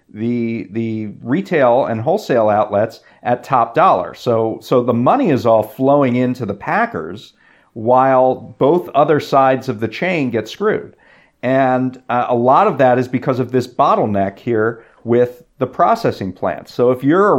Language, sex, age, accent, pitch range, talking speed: English, male, 40-59, American, 120-140 Hz, 165 wpm